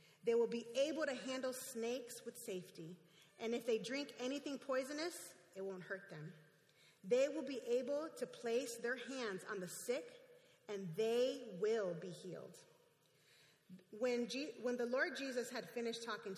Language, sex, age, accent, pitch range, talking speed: English, female, 30-49, American, 175-240 Hz, 160 wpm